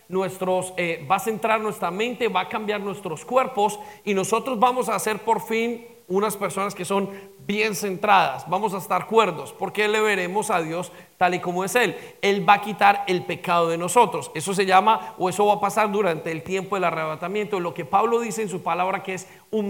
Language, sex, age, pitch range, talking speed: English, male, 40-59, 185-220 Hz, 215 wpm